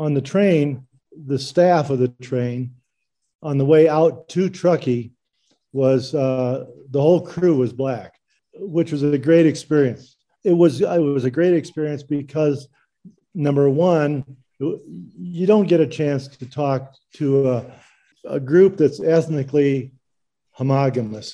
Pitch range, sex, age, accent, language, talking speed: 125-150 Hz, male, 50-69, American, English, 140 wpm